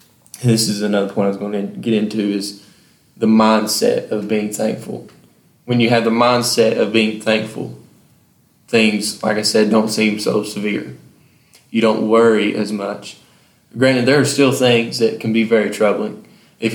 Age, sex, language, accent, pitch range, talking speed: 20-39, male, English, American, 105-115 Hz, 170 wpm